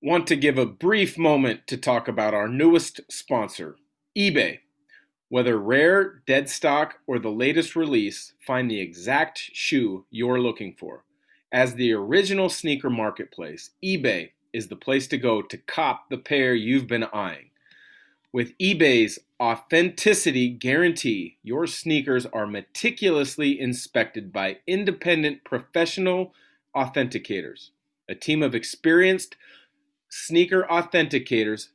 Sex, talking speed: male, 125 wpm